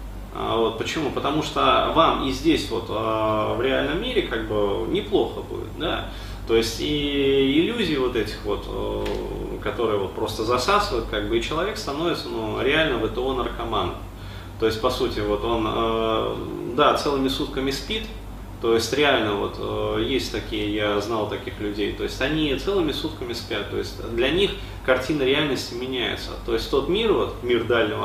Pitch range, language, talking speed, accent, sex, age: 105-145 Hz, Russian, 170 wpm, native, male, 20-39